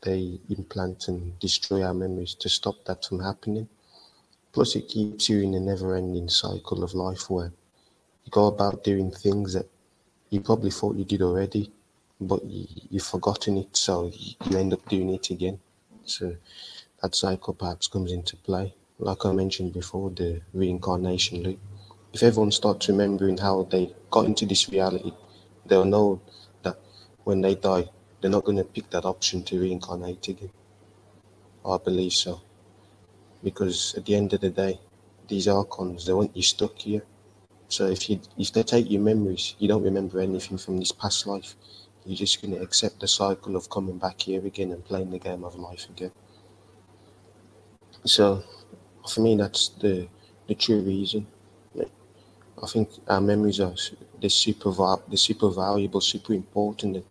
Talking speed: 165 wpm